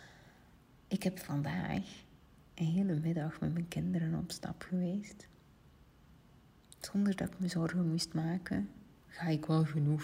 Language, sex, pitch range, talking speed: Dutch, female, 155-185 Hz, 135 wpm